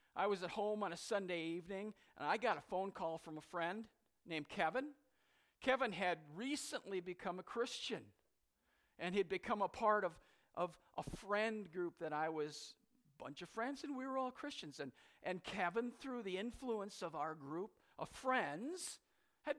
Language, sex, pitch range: English, male, 155-220 Hz